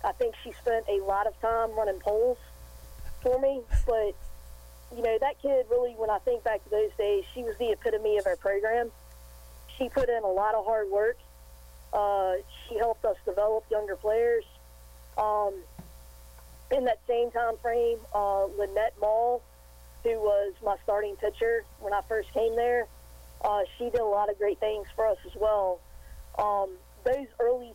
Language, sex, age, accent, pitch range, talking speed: English, female, 40-59, American, 190-235 Hz, 175 wpm